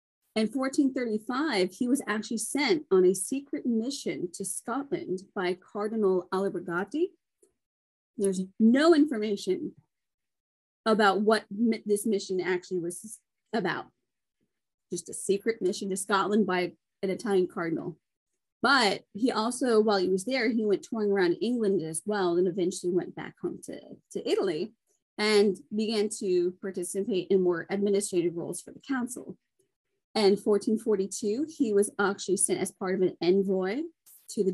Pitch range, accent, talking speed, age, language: 190-250 Hz, American, 140 wpm, 30-49, English